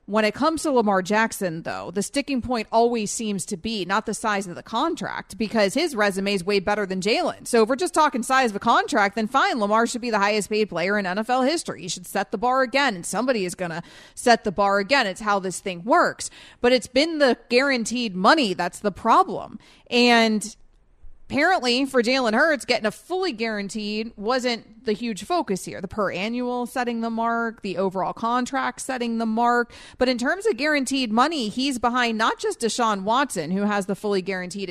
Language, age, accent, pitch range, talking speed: English, 30-49, American, 195-245 Hz, 210 wpm